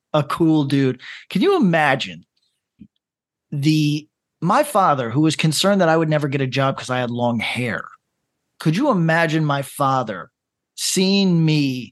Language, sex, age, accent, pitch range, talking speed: English, male, 40-59, American, 130-160 Hz, 155 wpm